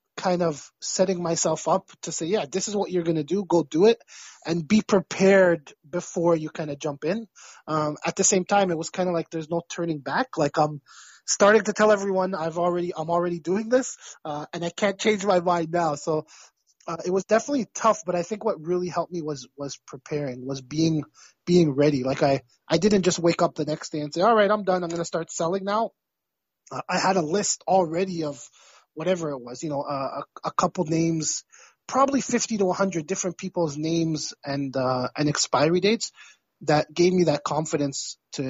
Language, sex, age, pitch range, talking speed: English, male, 20-39, 155-195 Hz, 210 wpm